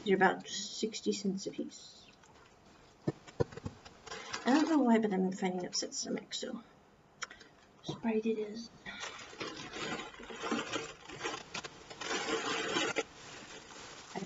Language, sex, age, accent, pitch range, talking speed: English, female, 50-69, American, 190-240 Hz, 80 wpm